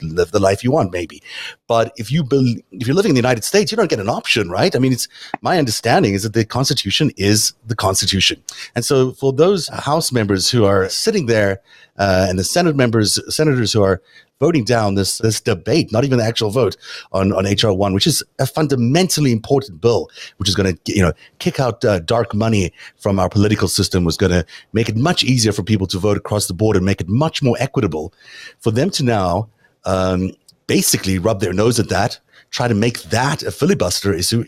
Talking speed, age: 215 wpm, 30-49